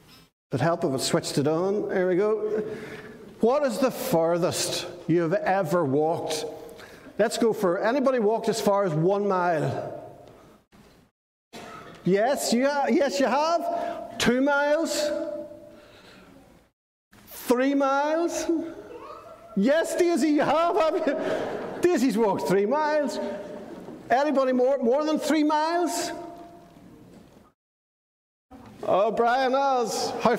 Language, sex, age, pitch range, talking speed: English, male, 50-69, 175-275 Hz, 115 wpm